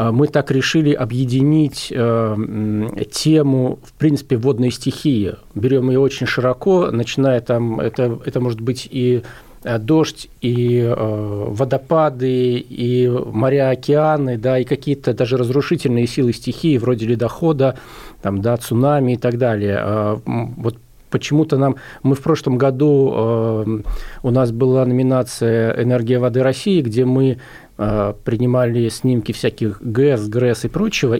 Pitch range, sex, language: 115-135 Hz, male, Russian